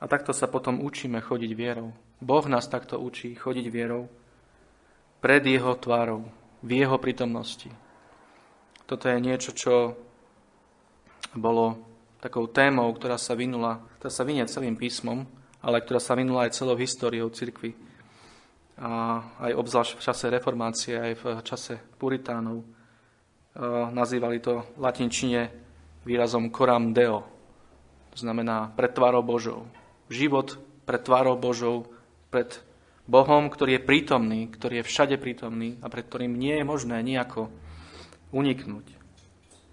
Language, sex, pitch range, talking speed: Slovak, male, 115-130 Hz, 125 wpm